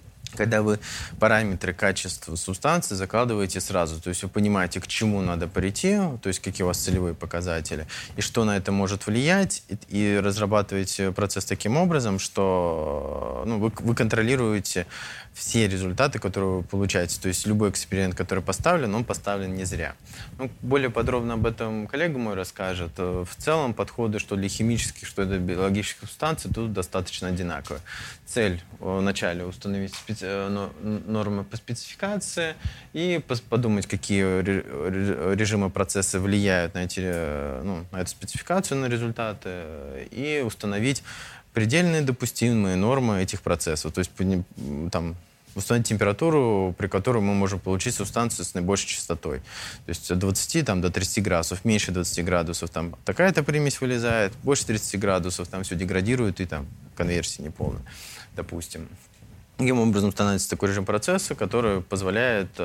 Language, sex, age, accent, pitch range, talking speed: Russian, male, 20-39, native, 95-115 Hz, 145 wpm